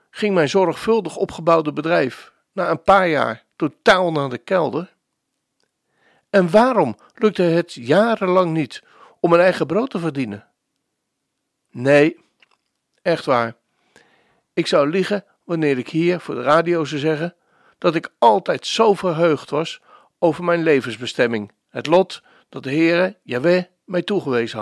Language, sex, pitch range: Dutch, male, 150-190 Hz